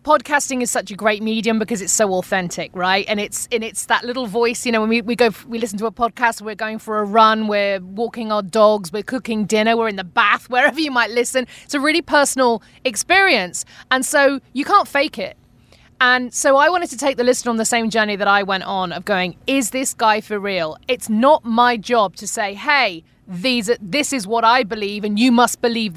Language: English